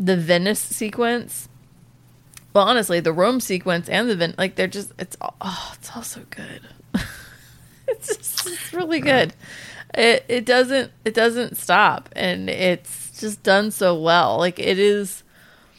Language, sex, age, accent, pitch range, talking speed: English, female, 20-39, American, 170-220 Hz, 155 wpm